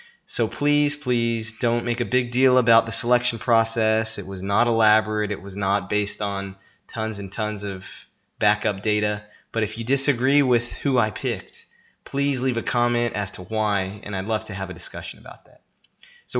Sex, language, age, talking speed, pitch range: male, English, 20-39, 190 wpm, 100-120 Hz